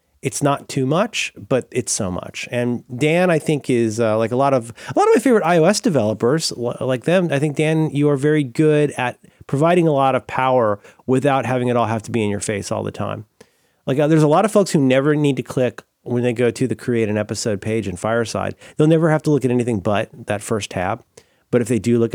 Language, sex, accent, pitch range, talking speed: English, male, American, 110-145 Hz, 250 wpm